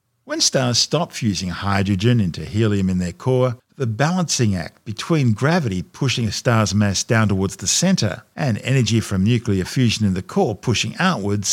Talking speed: 170 wpm